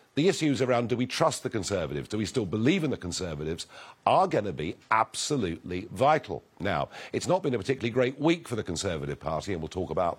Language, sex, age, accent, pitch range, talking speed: English, male, 50-69, British, 100-145 Hz, 220 wpm